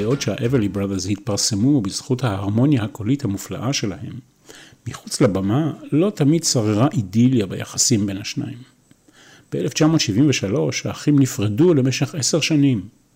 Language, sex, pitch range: Hebrew, male, 110-150 Hz